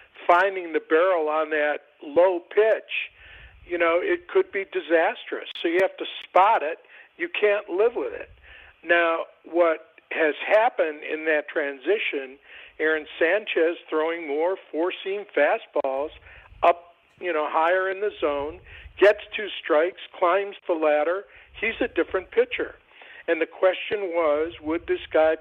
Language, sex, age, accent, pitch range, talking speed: English, male, 60-79, American, 155-205 Hz, 145 wpm